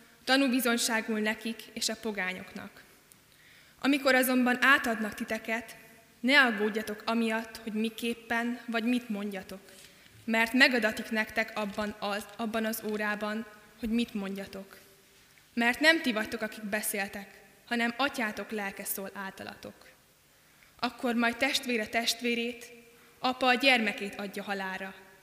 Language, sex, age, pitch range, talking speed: Hungarian, female, 20-39, 210-235 Hz, 110 wpm